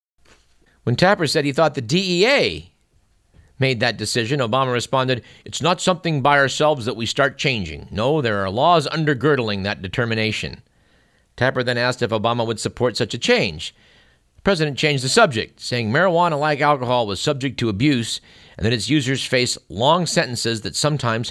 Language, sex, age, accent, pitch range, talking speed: English, male, 50-69, American, 110-140 Hz, 165 wpm